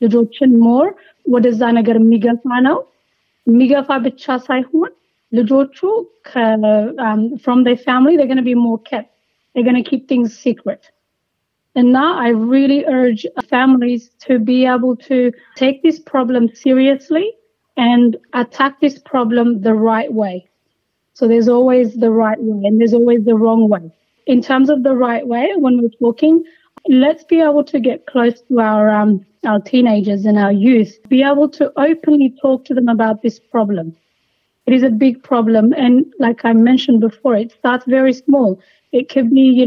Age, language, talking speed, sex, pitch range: 30-49, Amharic, 150 wpm, female, 230-275 Hz